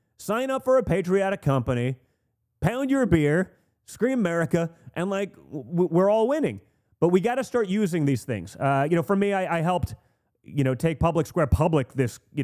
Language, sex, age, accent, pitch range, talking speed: English, male, 30-49, American, 140-225 Hz, 195 wpm